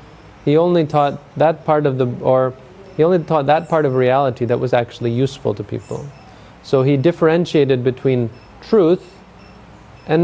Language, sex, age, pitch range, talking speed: English, male, 30-49, 120-155 Hz, 160 wpm